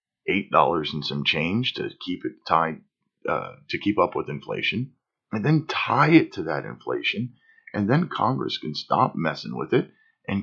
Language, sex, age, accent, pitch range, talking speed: English, male, 40-59, American, 100-150 Hz, 165 wpm